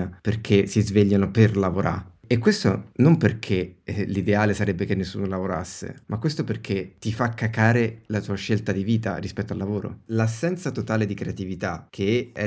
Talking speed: 165 wpm